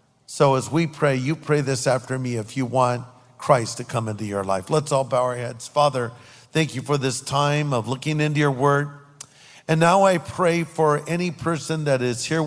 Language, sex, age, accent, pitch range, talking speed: English, male, 50-69, American, 125-155 Hz, 210 wpm